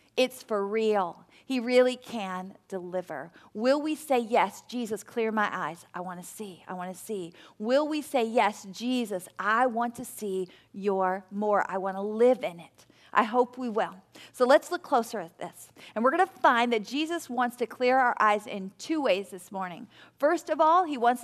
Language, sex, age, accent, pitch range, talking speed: English, female, 40-59, American, 200-260 Hz, 205 wpm